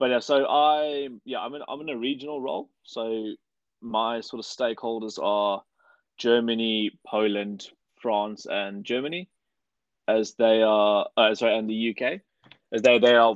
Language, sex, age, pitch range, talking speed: English, male, 20-39, 105-120 Hz, 155 wpm